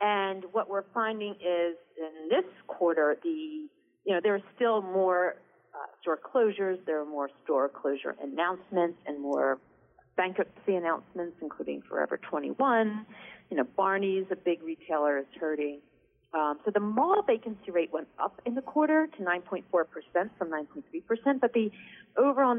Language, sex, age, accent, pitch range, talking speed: English, female, 40-59, American, 165-230 Hz, 170 wpm